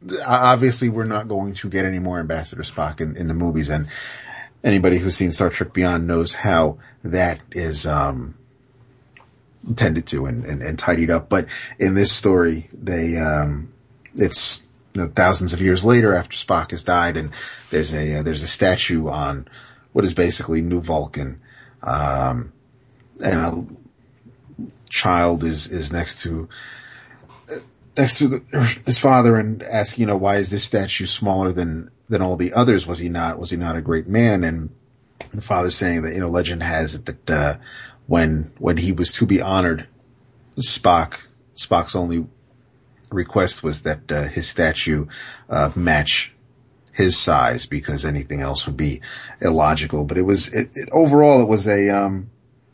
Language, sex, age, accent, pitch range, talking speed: English, male, 40-59, American, 80-120 Hz, 165 wpm